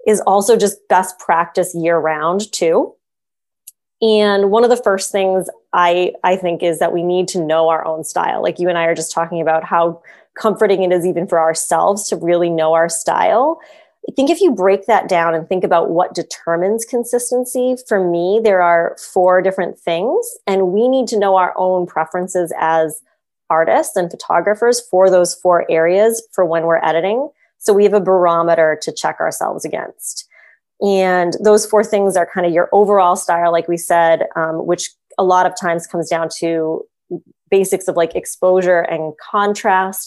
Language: English